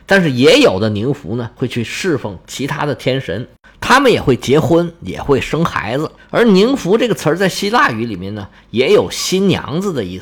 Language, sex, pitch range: Chinese, male, 120-200 Hz